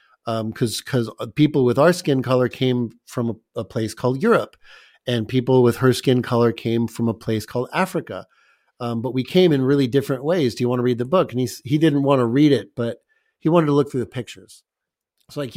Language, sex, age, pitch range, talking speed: English, male, 40-59, 115-150 Hz, 235 wpm